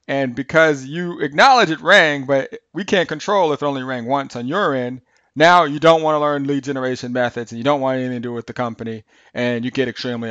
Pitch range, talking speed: 130-160 Hz, 240 wpm